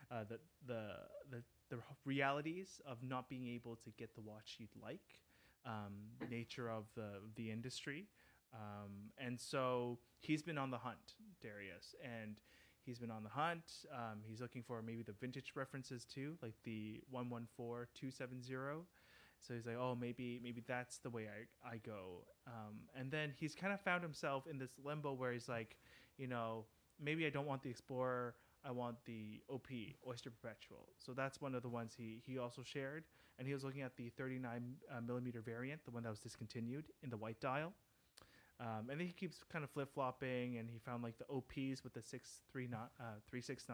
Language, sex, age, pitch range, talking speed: English, male, 20-39, 115-140 Hz, 190 wpm